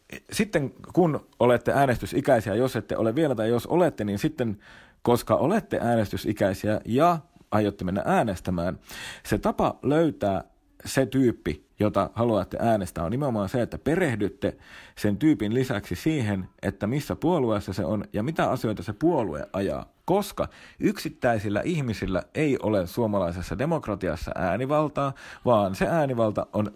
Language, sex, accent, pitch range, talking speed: Finnish, male, native, 100-130 Hz, 135 wpm